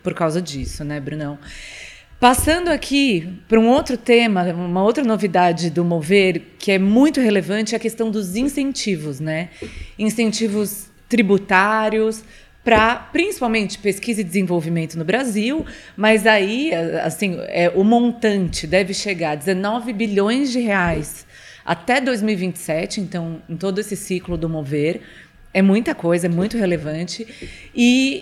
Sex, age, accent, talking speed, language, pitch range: female, 30-49, Brazilian, 135 wpm, Portuguese, 170-230 Hz